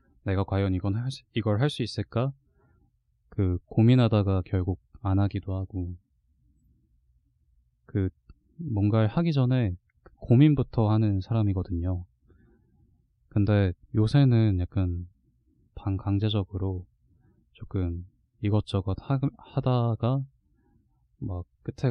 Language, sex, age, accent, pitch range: Korean, male, 20-39, native, 90-105 Hz